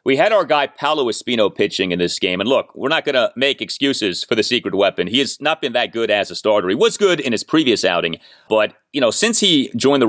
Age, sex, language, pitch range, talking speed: 30-49, male, English, 105-165 Hz, 270 wpm